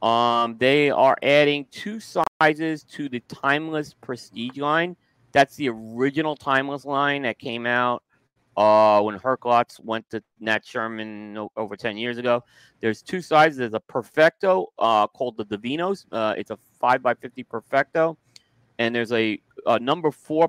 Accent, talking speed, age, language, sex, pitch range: American, 150 wpm, 30-49, English, male, 110-135 Hz